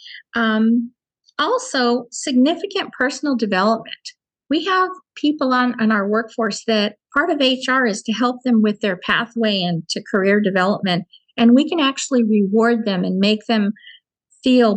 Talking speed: 150 wpm